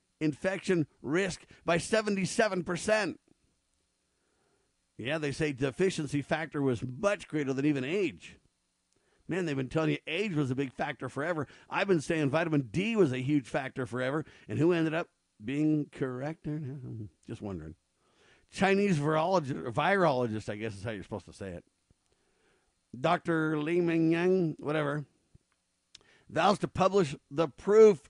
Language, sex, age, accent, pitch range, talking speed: English, male, 50-69, American, 125-170 Hz, 145 wpm